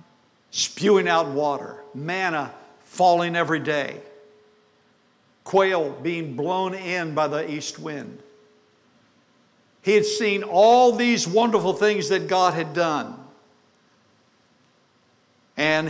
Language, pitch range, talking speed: English, 145-210 Hz, 100 wpm